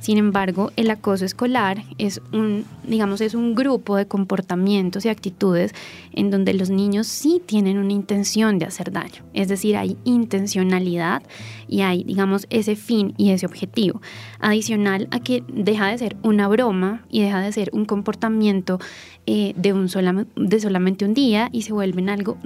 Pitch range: 185-220 Hz